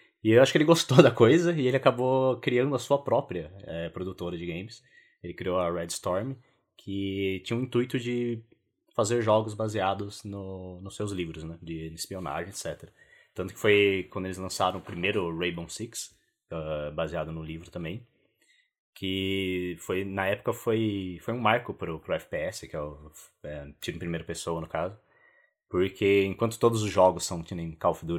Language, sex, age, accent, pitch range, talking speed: Portuguese, male, 20-39, Brazilian, 85-110 Hz, 185 wpm